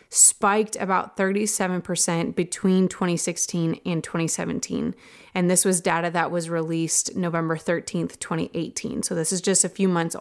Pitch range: 175-205 Hz